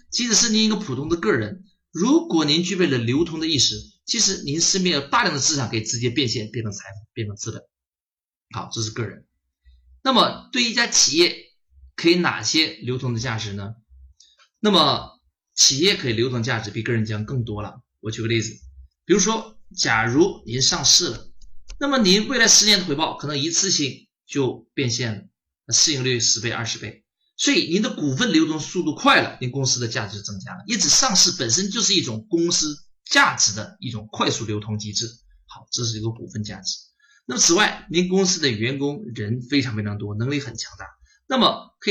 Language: Chinese